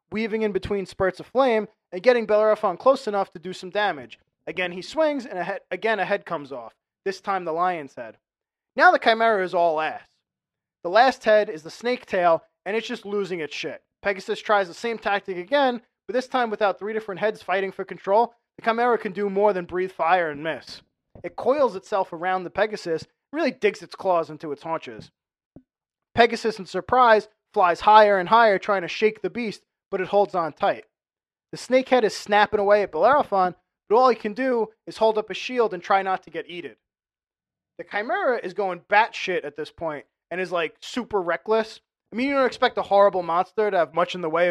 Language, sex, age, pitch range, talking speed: English, male, 20-39, 180-225 Hz, 210 wpm